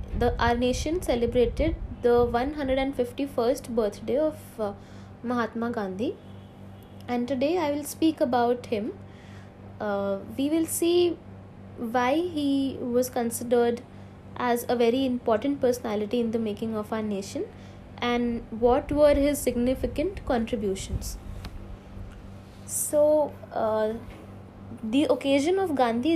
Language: Hindi